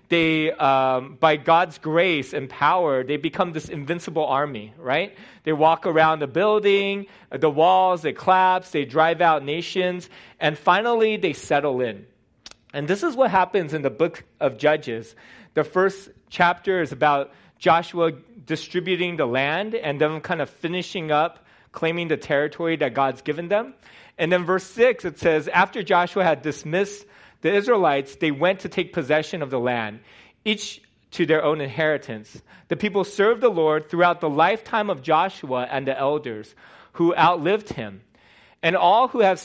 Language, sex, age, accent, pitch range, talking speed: English, male, 30-49, American, 145-185 Hz, 165 wpm